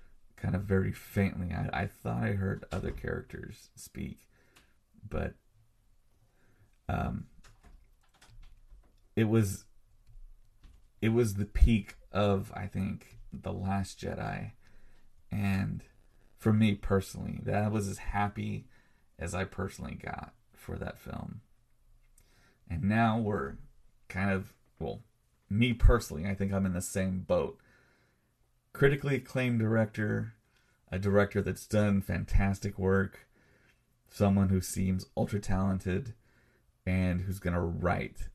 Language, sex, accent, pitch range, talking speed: English, male, American, 95-110 Hz, 115 wpm